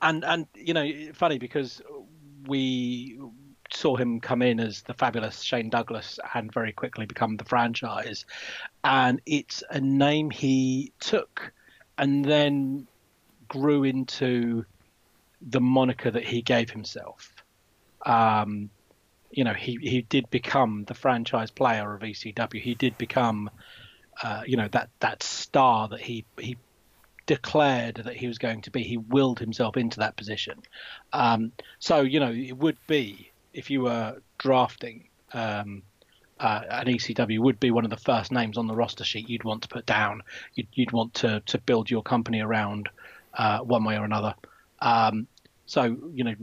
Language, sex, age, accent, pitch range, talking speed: English, male, 30-49, British, 110-130 Hz, 160 wpm